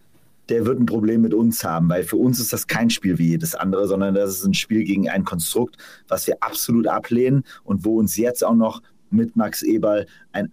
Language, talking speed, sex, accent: German, 220 wpm, male, German